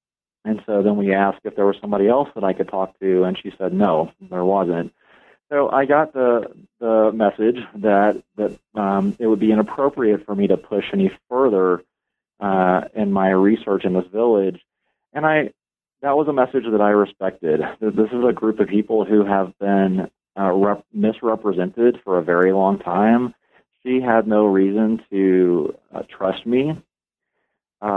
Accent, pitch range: American, 95-120 Hz